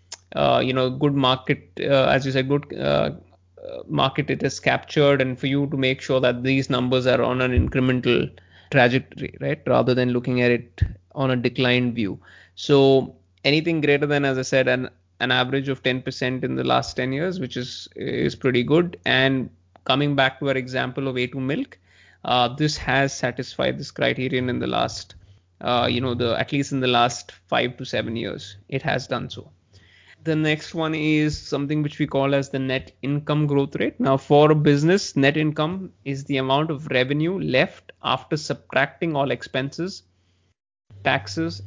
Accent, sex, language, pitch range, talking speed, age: Indian, male, English, 115-140 Hz, 185 wpm, 20-39